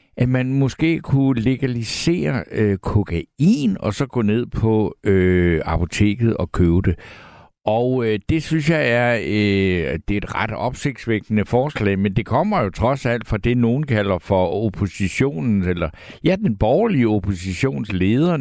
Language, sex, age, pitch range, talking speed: Danish, male, 60-79, 95-125 Hz, 155 wpm